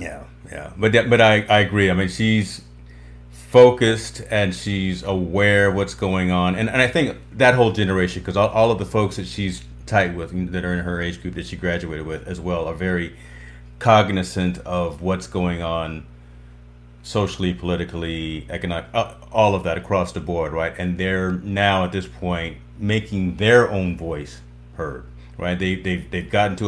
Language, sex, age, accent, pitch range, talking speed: English, male, 40-59, American, 85-105 Hz, 180 wpm